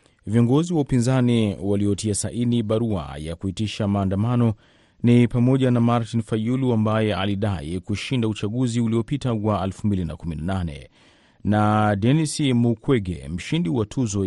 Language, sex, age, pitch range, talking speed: Swahili, male, 30-49, 100-120 Hz, 115 wpm